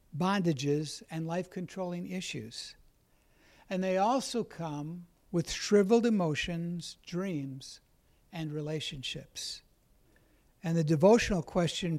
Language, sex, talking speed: English, male, 90 wpm